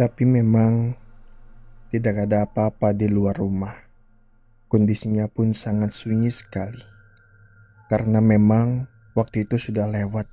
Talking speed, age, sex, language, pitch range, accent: 110 wpm, 20-39, male, Indonesian, 110-115 Hz, native